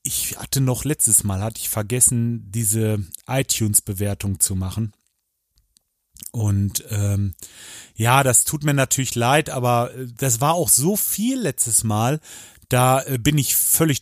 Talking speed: 140 wpm